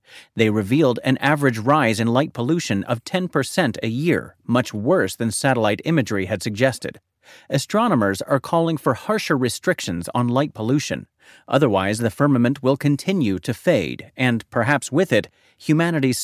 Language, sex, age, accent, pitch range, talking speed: English, male, 40-59, American, 115-165 Hz, 150 wpm